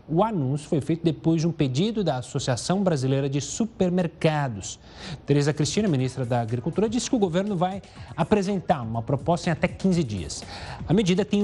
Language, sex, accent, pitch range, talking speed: Portuguese, male, Brazilian, 140-210 Hz, 175 wpm